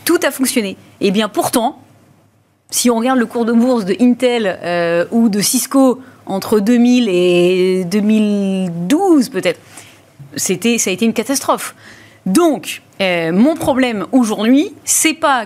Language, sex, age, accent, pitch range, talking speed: French, female, 30-49, French, 190-280 Hz, 145 wpm